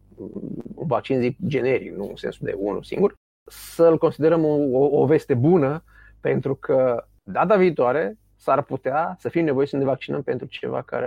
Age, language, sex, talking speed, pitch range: 30-49, Romanian, male, 165 wpm, 120-165 Hz